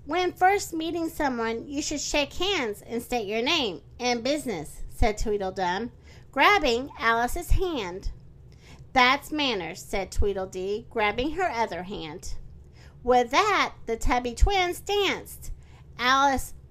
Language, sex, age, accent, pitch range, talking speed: English, female, 40-59, American, 235-350 Hz, 120 wpm